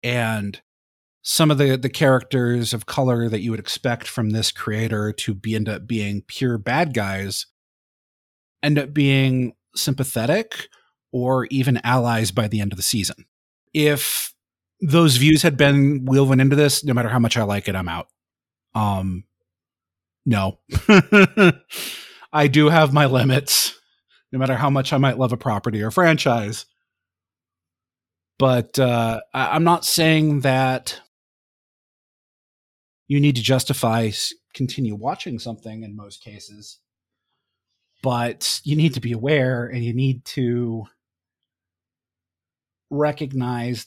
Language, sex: English, male